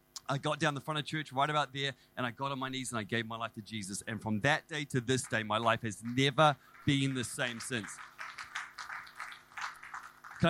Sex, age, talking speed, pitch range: male, 30-49, 225 wpm, 125-185 Hz